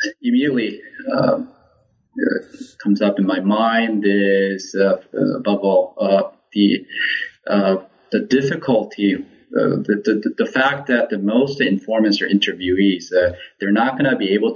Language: English